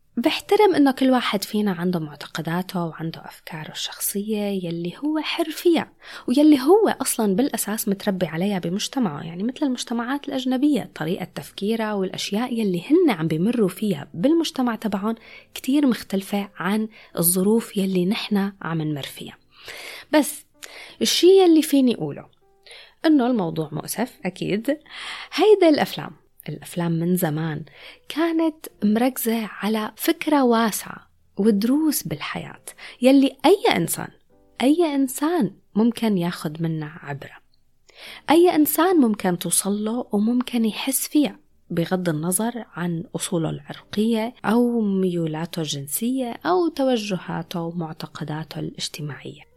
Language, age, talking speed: Arabic, 20-39, 110 wpm